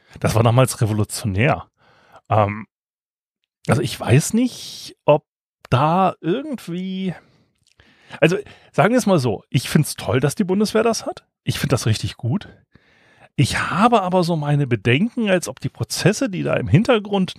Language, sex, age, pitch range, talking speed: German, male, 30-49, 130-195 Hz, 160 wpm